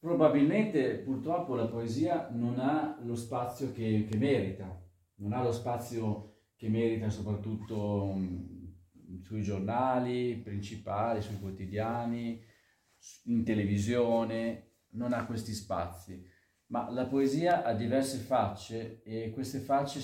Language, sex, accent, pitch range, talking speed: Italian, male, native, 100-120 Hz, 115 wpm